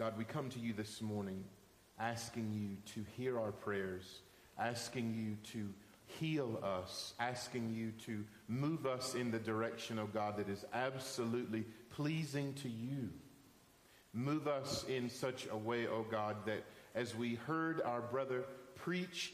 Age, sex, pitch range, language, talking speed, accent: 50-69, male, 115-145 Hz, English, 160 wpm, American